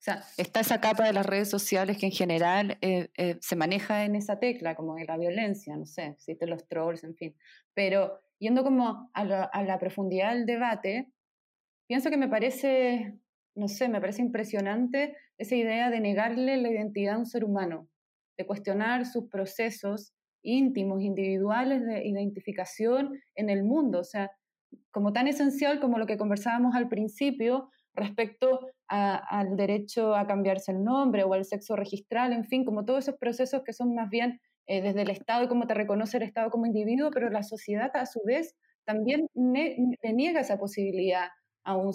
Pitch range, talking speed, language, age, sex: 195-245 Hz, 185 wpm, Spanish, 20-39, female